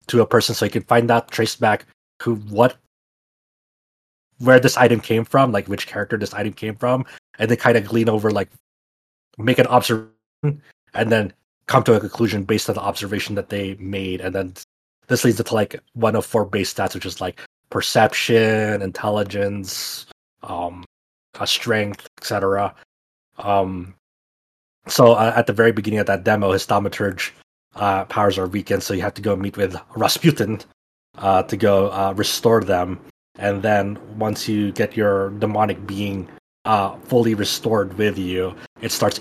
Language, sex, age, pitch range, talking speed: English, male, 20-39, 100-115 Hz, 170 wpm